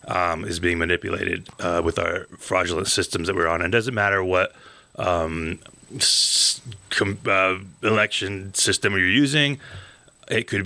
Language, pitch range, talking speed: English, 95-110 Hz, 140 wpm